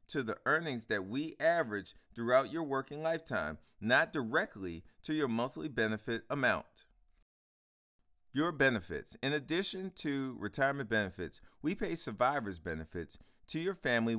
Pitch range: 105-145 Hz